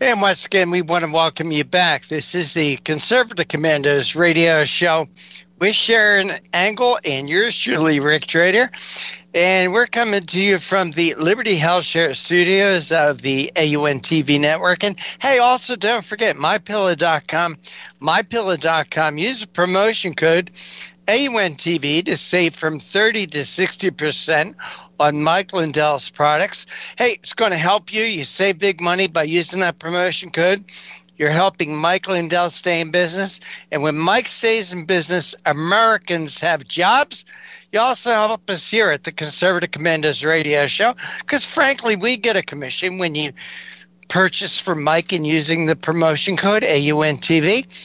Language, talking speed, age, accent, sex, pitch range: English, 155 wpm, 60-79, American, male, 160-195 Hz